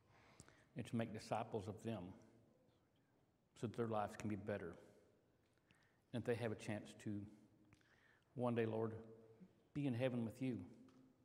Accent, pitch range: American, 110-130 Hz